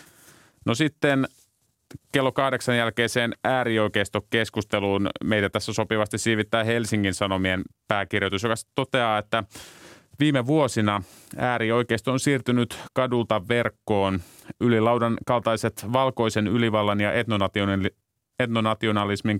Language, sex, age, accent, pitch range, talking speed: Finnish, male, 30-49, native, 100-120 Hz, 95 wpm